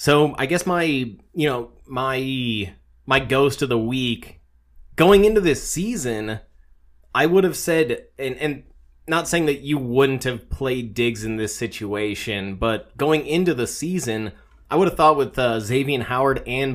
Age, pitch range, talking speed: 20-39, 110-145 Hz, 170 wpm